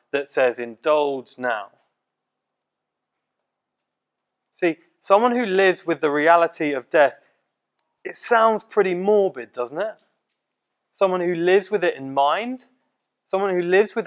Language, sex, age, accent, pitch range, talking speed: English, male, 20-39, British, 160-205 Hz, 130 wpm